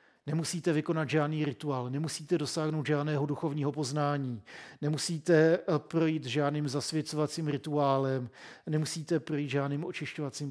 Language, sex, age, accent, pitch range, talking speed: Czech, male, 50-69, native, 135-155 Hz, 105 wpm